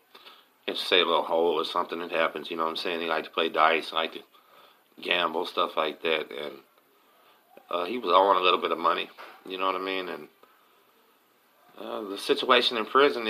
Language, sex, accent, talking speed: English, male, American, 205 wpm